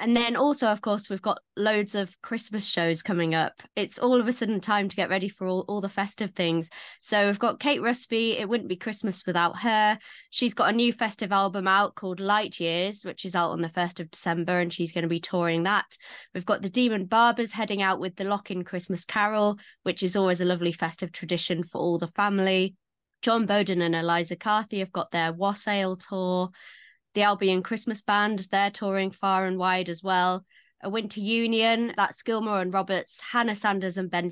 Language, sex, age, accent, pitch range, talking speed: English, female, 20-39, British, 180-215 Hz, 210 wpm